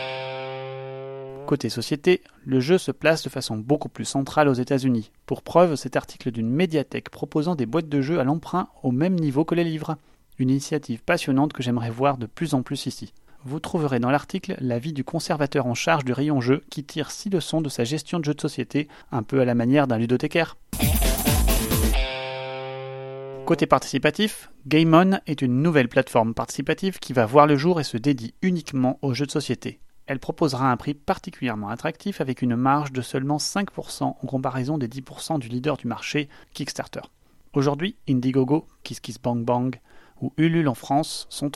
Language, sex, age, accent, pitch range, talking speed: French, male, 30-49, French, 130-155 Hz, 185 wpm